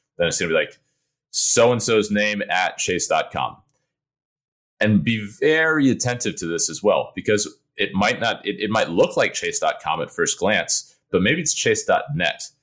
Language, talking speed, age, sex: English, 165 wpm, 30-49, male